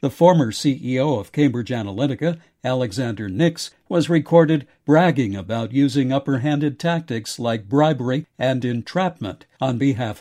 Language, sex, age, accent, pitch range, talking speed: English, male, 60-79, American, 125-155 Hz, 130 wpm